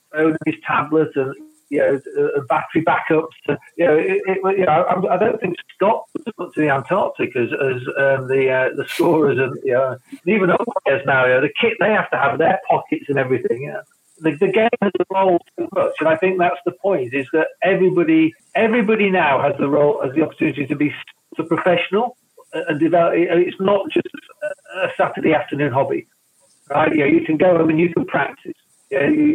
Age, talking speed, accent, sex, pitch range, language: 50-69, 210 wpm, British, male, 140-190 Hz, English